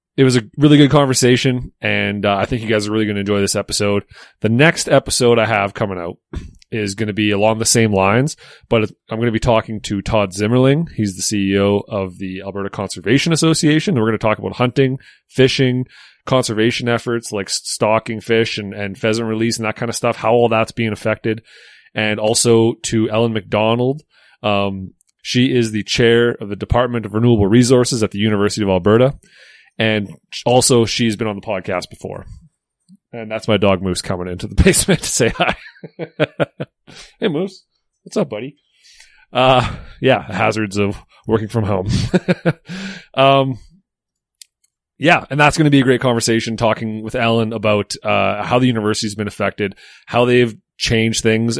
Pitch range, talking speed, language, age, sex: 105-125 Hz, 180 wpm, English, 30-49, male